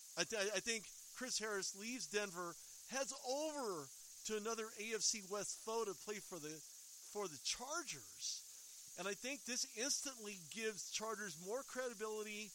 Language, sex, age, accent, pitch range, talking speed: English, male, 40-59, American, 155-200 Hz, 150 wpm